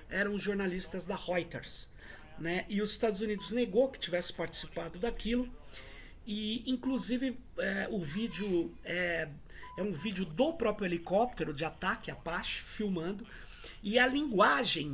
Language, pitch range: Portuguese, 175-245 Hz